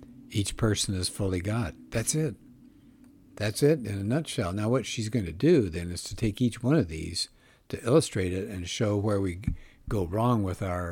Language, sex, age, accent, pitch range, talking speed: English, male, 60-79, American, 90-115 Hz, 205 wpm